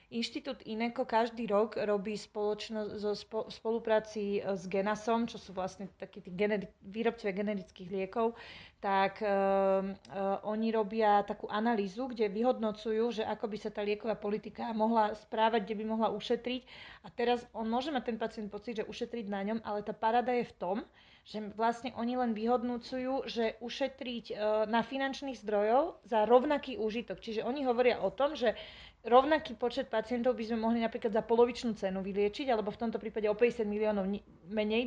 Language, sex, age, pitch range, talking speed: Slovak, female, 20-39, 210-240 Hz, 165 wpm